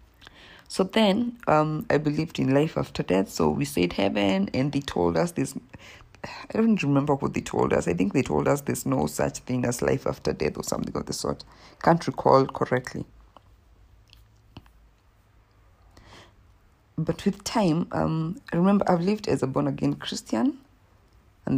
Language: English